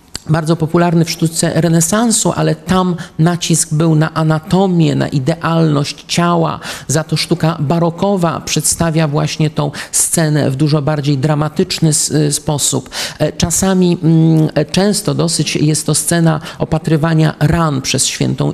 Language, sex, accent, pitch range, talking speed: Polish, male, native, 150-185 Hz, 125 wpm